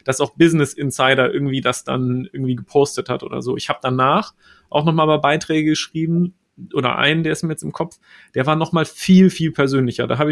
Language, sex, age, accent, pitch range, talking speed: German, male, 30-49, German, 130-155 Hz, 210 wpm